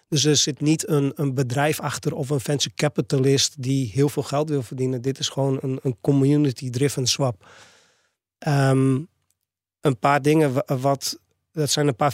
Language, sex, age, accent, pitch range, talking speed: Dutch, male, 30-49, Dutch, 130-145 Hz, 175 wpm